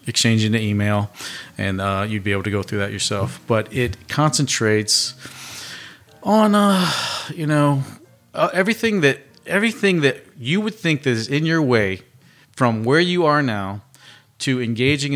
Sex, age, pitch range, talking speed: male, 40-59, 105-130 Hz, 160 wpm